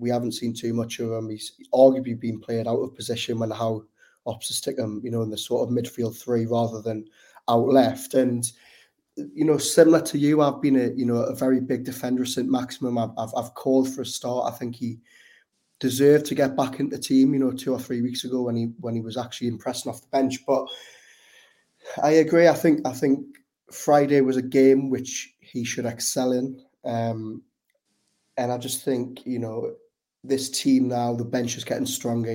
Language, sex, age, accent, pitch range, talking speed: English, male, 20-39, British, 115-135 Hz, 210 wpm